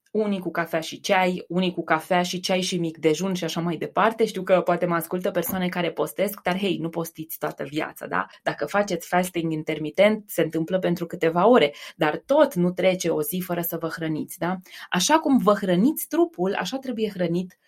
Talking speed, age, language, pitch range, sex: 205 wpm, 20-39, Romanian, 180-235 Hz, female